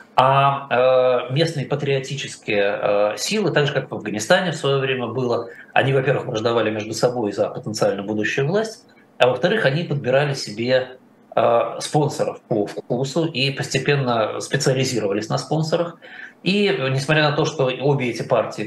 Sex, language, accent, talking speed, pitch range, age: male, Russian, native, 140 wpm, 115-145 Hz, 20-39